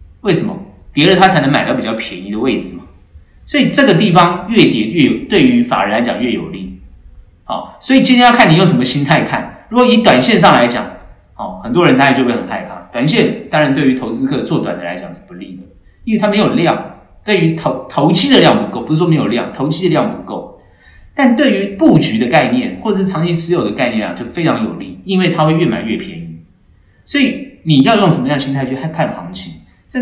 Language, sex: Chinese, male